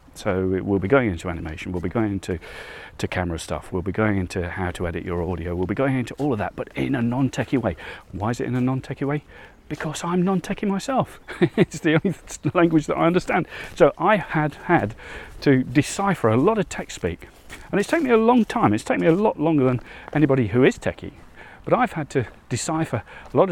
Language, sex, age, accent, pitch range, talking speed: English, male, 40-59, British, 105-160 Hz, 230 wpm